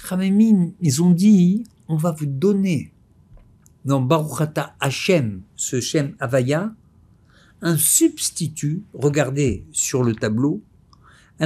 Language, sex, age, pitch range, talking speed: French, male, 60-79, 110-180 Hz, 110 wpm